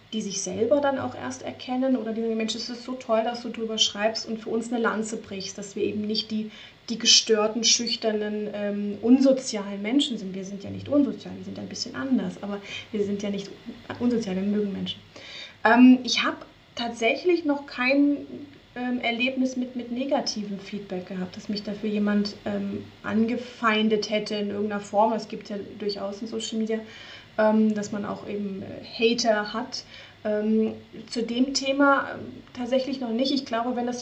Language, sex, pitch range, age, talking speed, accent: German, female, 210-245 Hz, 30-49, 180 wpm, German